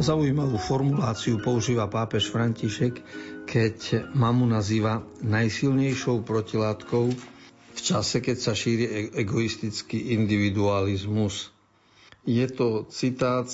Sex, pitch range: male, 105-125 Hz